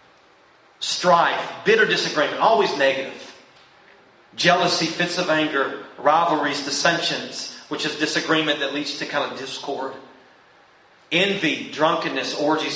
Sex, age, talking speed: male, 40-59, 110 wpm